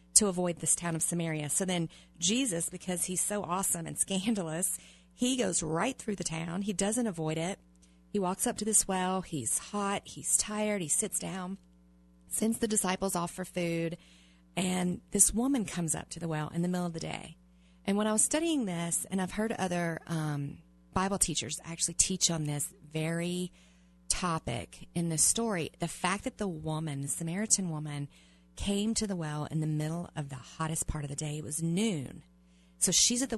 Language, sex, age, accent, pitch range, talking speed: English, female, 40-59, American, 155-190 Hz, 195 wpm